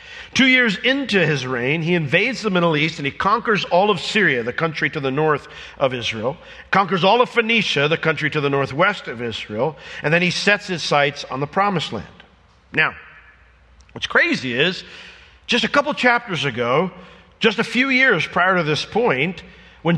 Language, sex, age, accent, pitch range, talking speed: English, male, 50-69, American, 150-220 Hz, 185 wpm